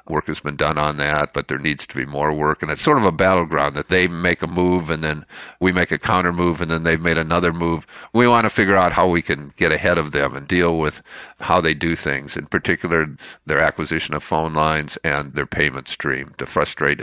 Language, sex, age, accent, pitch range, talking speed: English, male, 50-69, American, 75-90 Hz, 245 wpm